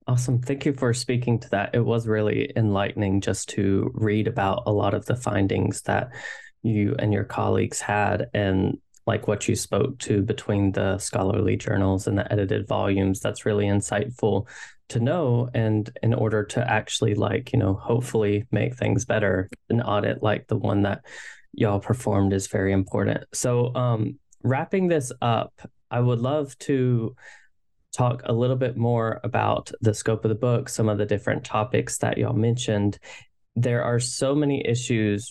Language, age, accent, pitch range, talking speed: English, 20-39, American, 105-120 Hz, 170 wpm